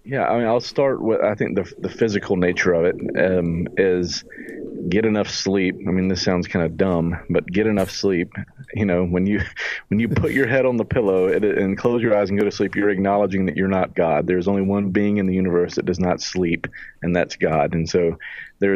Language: English